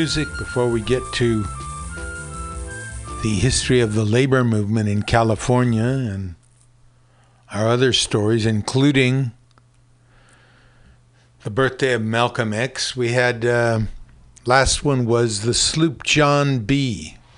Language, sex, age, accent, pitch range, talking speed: English, male, 50-69, American, 105-125 Hz, 110 wpm